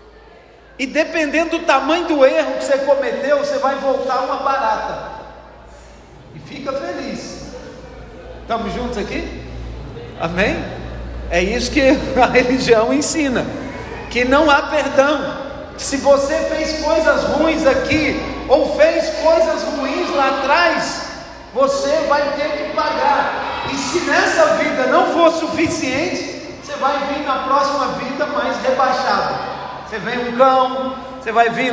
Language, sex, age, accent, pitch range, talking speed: Portuguese, male, 40-59, Brazilian, 265-315 Hz, 130 wpm